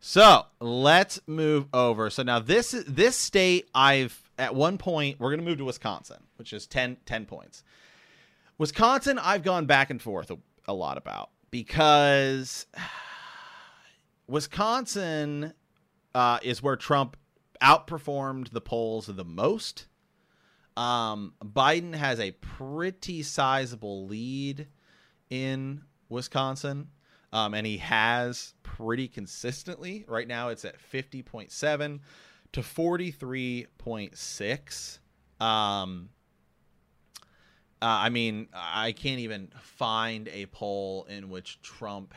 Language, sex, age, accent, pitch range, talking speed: English, male, 30-49, American, 110-150 Hz, 110 wpm